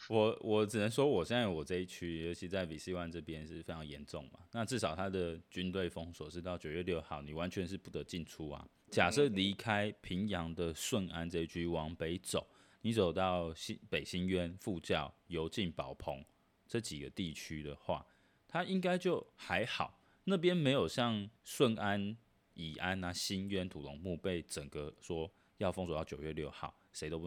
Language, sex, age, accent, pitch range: Chinese, male, 20-39, native, 80-100 Hz